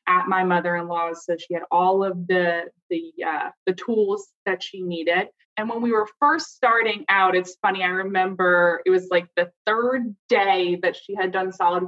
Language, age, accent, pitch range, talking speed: English, 20-39, American, 180-235 Hz, 190 wpm